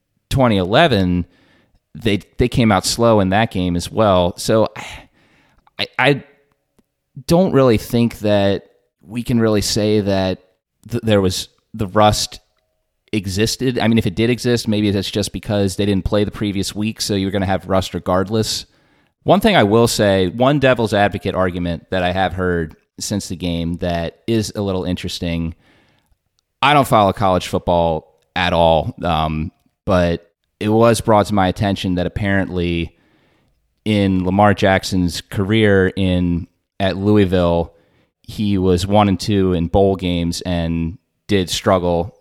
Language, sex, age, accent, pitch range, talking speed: English, male, 30-49, American, 90-105 Hz, 155 wpm